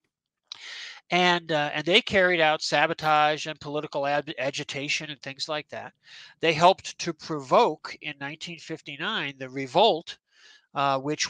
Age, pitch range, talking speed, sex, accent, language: 50-69, 150-195 Hz, 130 wpm, male, American, English